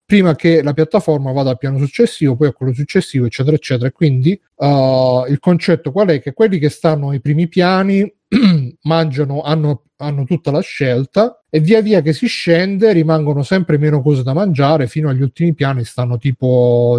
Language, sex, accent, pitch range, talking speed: Italian, male, native, 130-165 Hz, 180 wpm